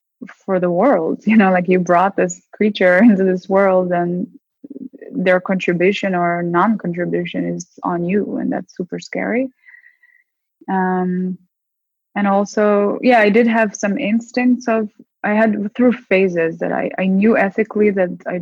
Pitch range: 180-235 Hz